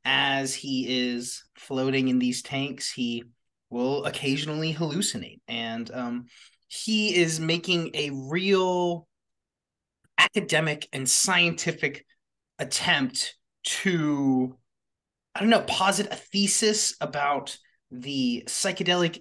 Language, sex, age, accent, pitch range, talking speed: English, male, 30-49, American, 130-170 Hz, 100 wpm